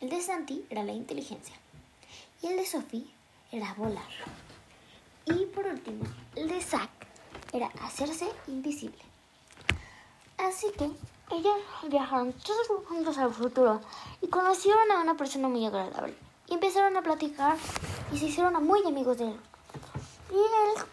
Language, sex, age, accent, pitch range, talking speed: Spanish, male, 20-39, Mexican, 255-375 Hz, 140 wpm